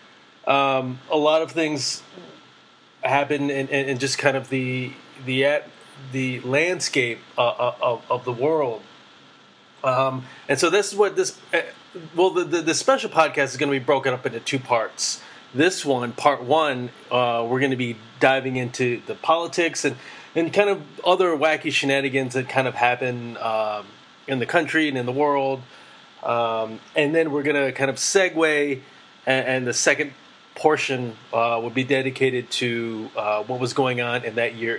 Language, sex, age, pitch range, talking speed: English, male, 30-49, 125-150 Hz, 180 wpm